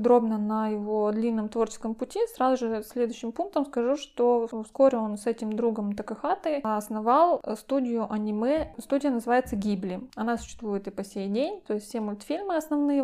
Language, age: Russian, 20-39